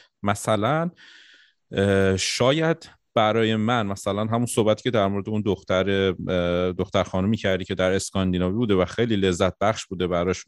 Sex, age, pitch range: male, 30-49, 95-125 Hz